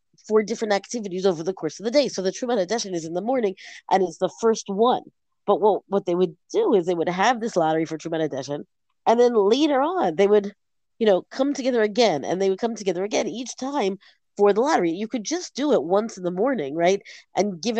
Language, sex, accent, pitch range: English, female, American, 180-245 Hz